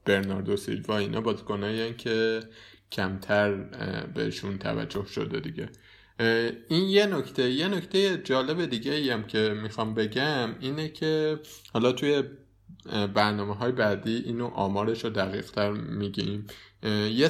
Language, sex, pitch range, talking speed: Persian, male, 100-125 Hz, 125 wpm